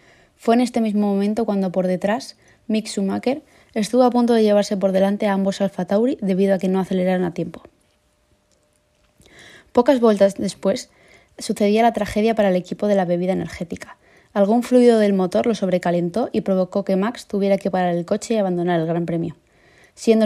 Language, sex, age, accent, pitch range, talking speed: Spanish, female, 20-39, Spanish, 190-220 Hz, 185 wpm